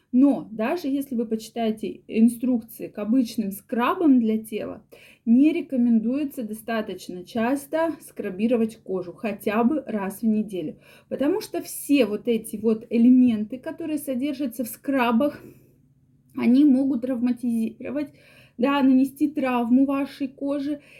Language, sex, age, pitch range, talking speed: Russian, female, 20-39, 225-285 Hz, 115 wpm